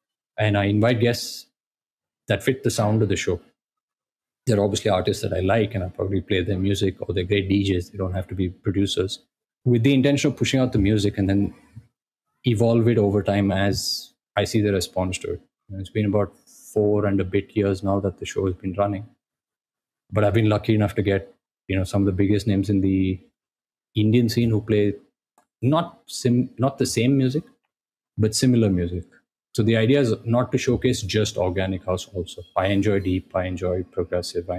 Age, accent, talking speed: 20-39, Indian, 200 wpm